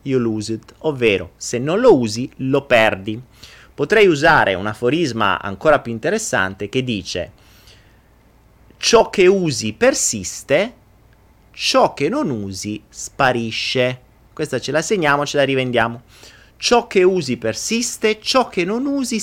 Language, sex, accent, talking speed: Italian, male, native, 130 wpm